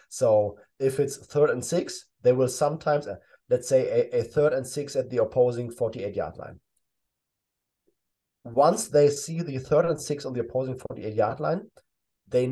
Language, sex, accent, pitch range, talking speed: English, male, German, 120-150 Hz, 165 wpm